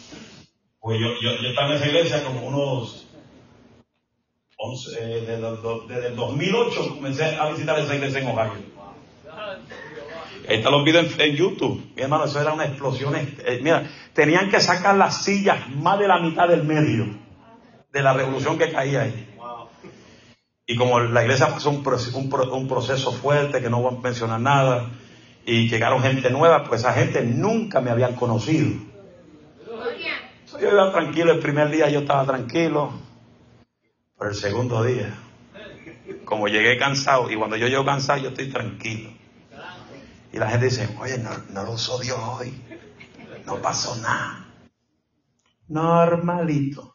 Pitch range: 120-150 Hz